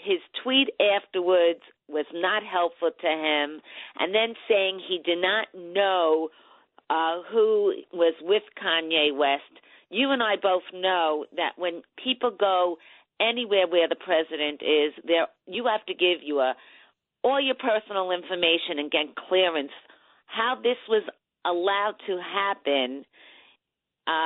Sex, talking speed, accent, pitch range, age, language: female, 140 wpm, American, 165-220 Hz, 50-69, English